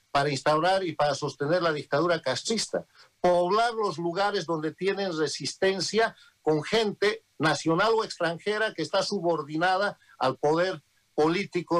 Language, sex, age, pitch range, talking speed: Spanish, male, 50-69, 135-175 Hz, 125 wpm